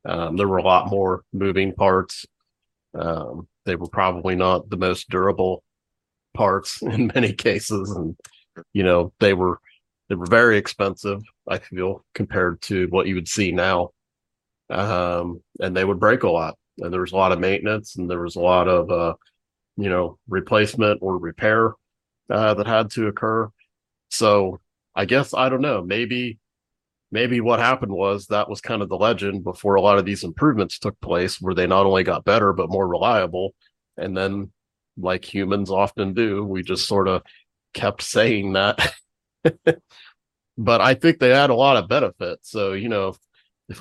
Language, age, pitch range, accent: English, 40-59, 90-105 Hz, American